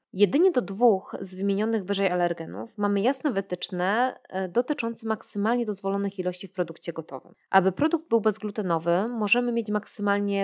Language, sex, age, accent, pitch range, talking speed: Polish, female, 20-39, native, 180-225 Hz, 140 wpm